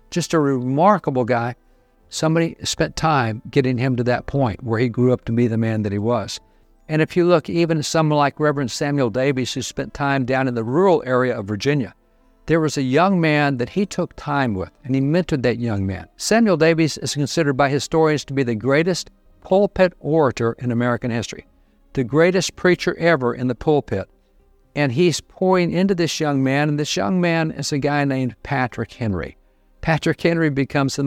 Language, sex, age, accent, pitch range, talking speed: English, male, 60-79, American, 125-165 Hz, 195 wpm